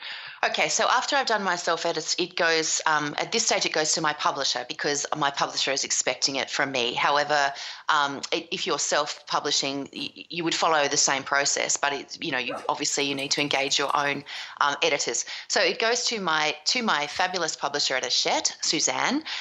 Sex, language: female, English